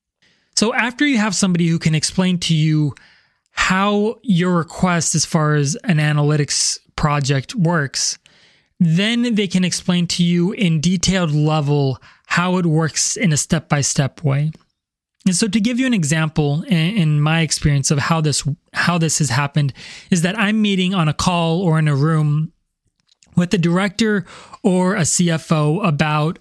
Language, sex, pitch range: English, male, 155-190 Hz